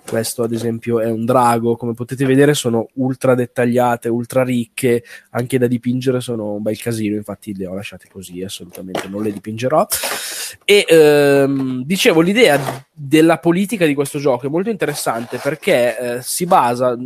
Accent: native